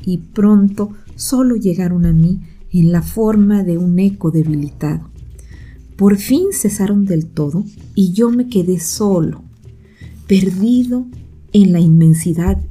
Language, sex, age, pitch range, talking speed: Spanish, female, 40-59, 160-205 Hz, 125 wpm